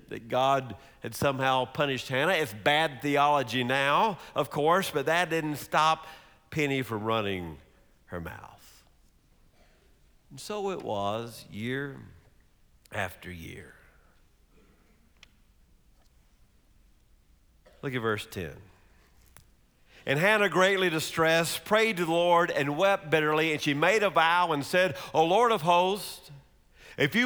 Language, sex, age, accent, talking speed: English, male, 50-69, American, 125 wpm